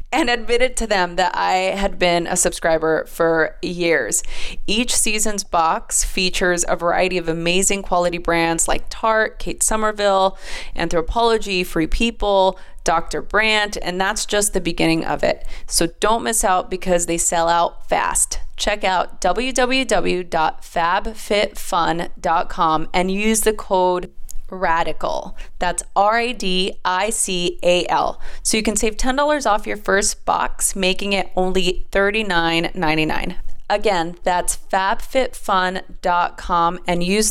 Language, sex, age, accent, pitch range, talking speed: English, female, 30-49, American, 170-210 Hz, 120 wpm